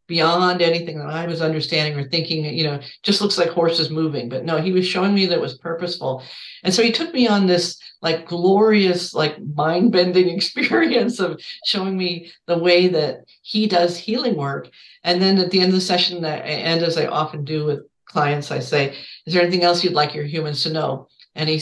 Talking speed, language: 210 wpm, English